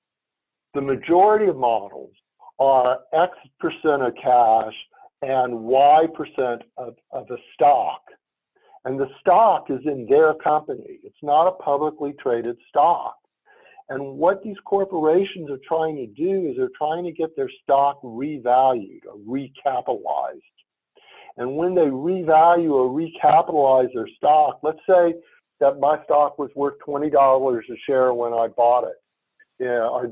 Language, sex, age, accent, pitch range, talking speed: English, male, 60-79, American, 125-165 Hz, 140 wpm